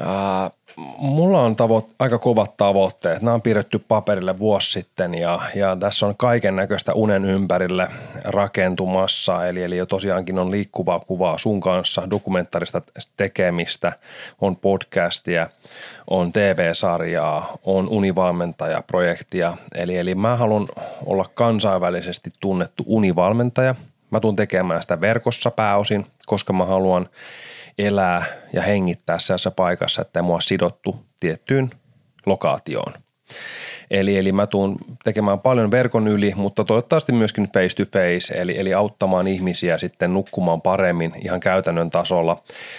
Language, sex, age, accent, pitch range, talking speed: Finnish, male, 30-49, native, 90-105 Hz, 125 wpm